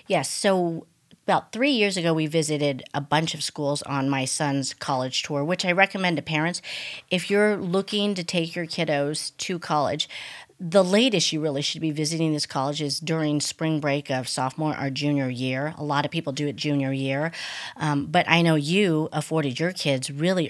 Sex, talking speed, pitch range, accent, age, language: female, 195 wpm, 145-170 Hz, American, 40-59, English